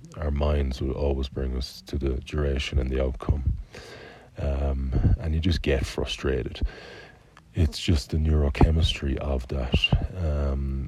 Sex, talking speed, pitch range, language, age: male, 140 wpm, 70-80 Hz, English, 30-49